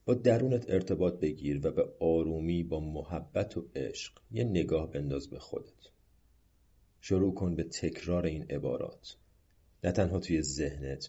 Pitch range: 75-95 Hz